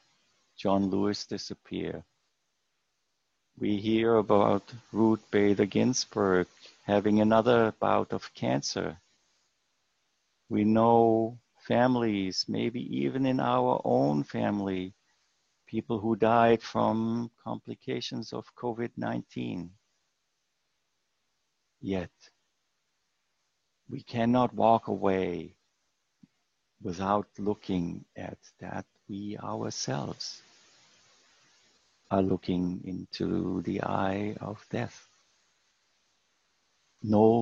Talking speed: 80 wpm